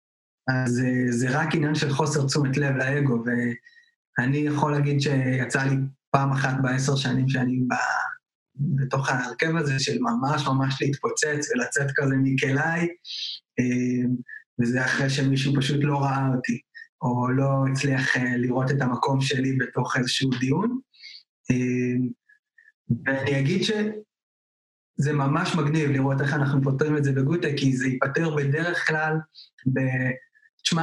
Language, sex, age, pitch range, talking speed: Hebrew, male, 20-39, 135-160 Hz, 115 wpm